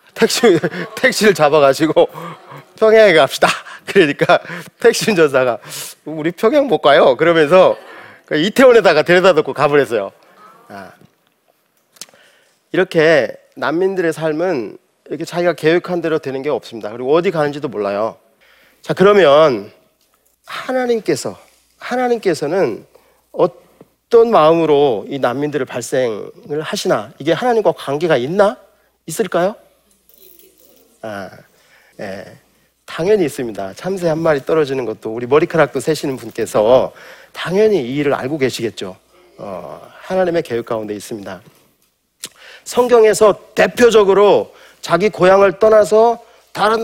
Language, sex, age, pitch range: Korean, male, 40-59, 145-215 Hz